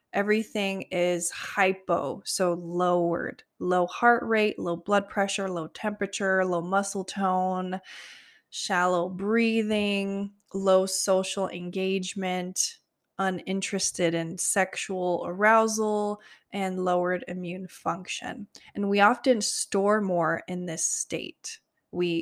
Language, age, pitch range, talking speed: English, 20-39, 180-210 Hz, 105 wpm